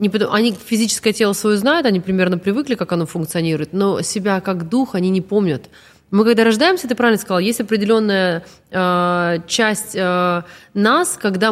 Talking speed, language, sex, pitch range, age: 160 wpm, Russian, female, 180-230 Hz, 20-39